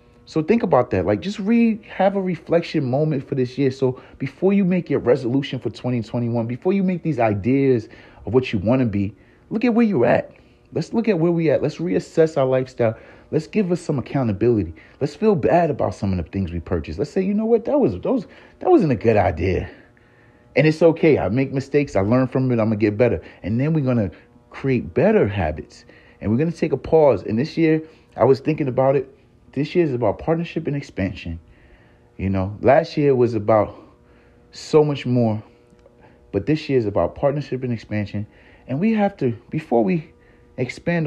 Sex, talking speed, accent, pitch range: male, 215 wpm, American, 110-155 Hz